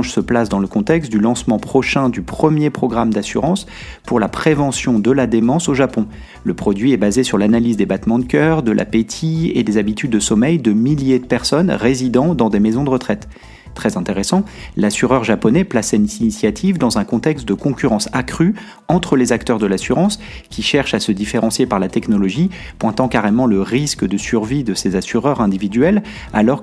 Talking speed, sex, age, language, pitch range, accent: 190 wpm, male, 30-49, French, 110-140 Hz, French